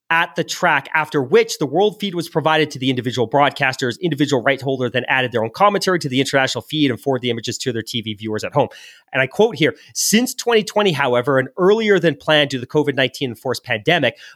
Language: English